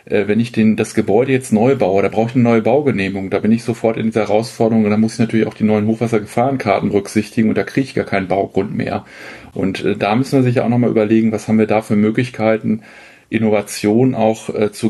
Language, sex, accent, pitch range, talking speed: German, male, German, 105-120 Hz, 225 wpm